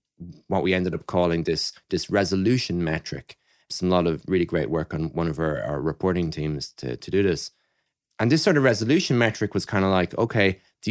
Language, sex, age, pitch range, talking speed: English, male, 20-39, 85-110 Hz, 210 wpm